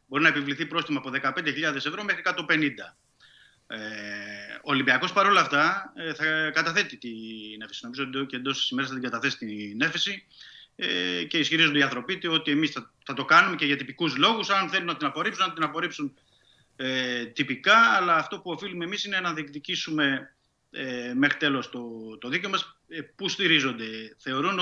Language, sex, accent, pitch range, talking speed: Greek, male, native, 130-175 Hz, 155 wpm